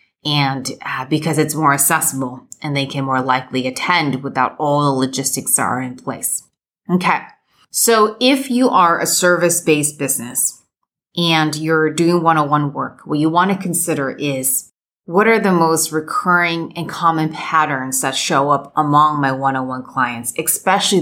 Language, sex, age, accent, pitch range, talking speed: English, female, 30-49, American, 140-170 Hz, 170 wpm